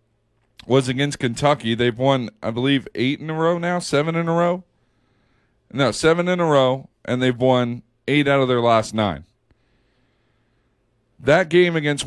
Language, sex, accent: English, male, American